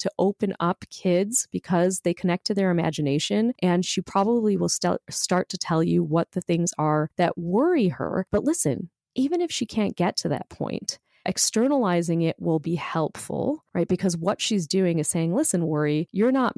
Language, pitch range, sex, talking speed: English, 165-205 Hz, female, 185 wpm